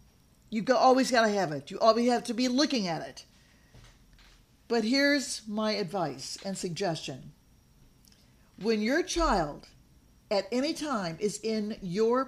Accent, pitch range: American, 205-280 Hz